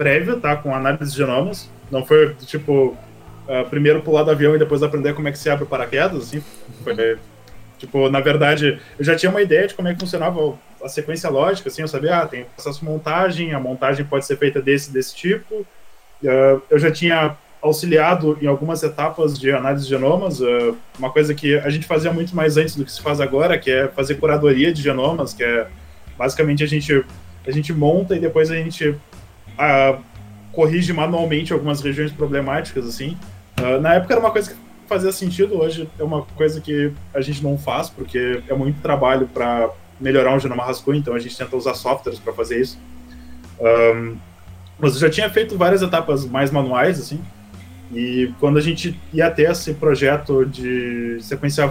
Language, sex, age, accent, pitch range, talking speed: Portuguese, male, 20-39, Brazilian, 130-155 Hz, 195 wpm